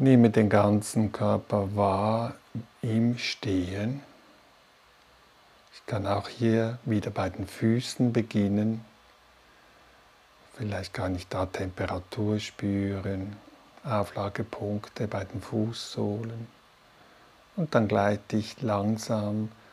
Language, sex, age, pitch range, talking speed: German, male, 50-69, 100-115 Hz, 95 wpm